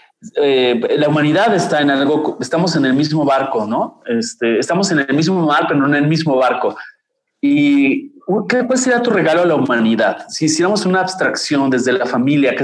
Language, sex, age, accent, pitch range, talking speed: Spanish, male, 30-49, Mexican, 130-185 Hz, 190 wpm